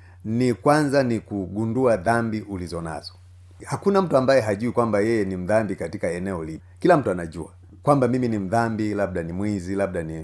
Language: Swahili